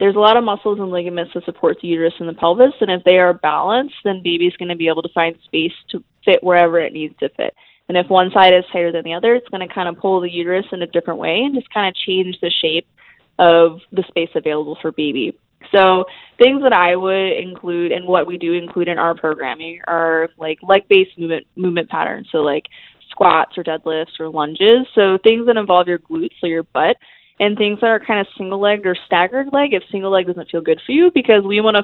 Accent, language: American, English